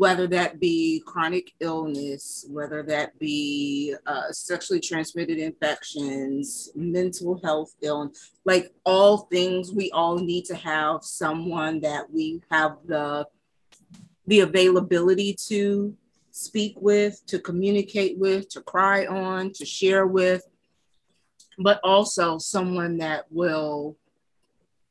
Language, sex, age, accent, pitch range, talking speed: English, female, 30-49, American, 155-185 Hz, 115 wpm